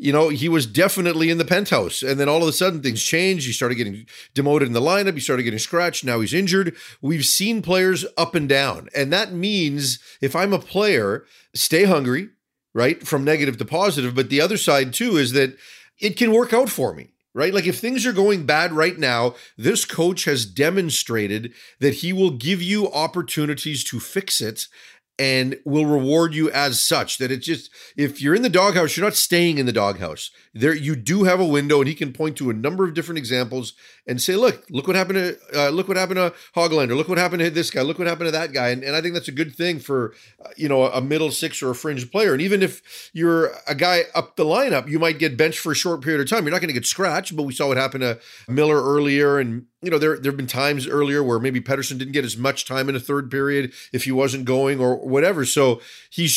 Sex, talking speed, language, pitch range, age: male, 240 wpm, English, 135-170 Hz, 40-59